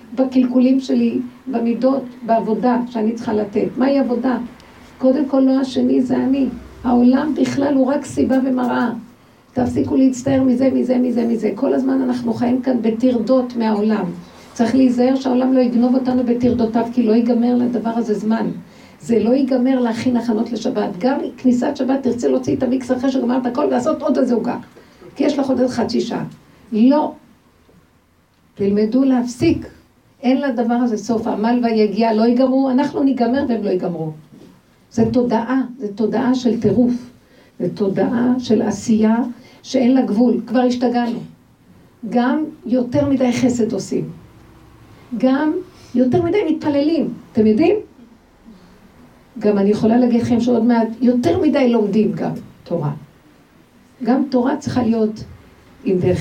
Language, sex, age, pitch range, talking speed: Hebrew, female, 50-69, 225-260 Hz, 140 wpm